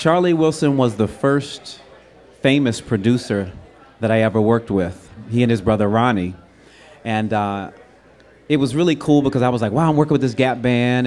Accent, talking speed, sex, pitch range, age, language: American, 185 wpm, male, 110-130 Hz, 30-49, English